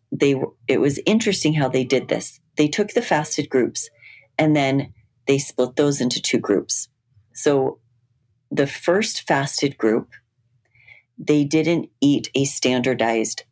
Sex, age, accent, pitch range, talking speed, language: female, 40-59, American, 120-150 Hz, 140 wpm, English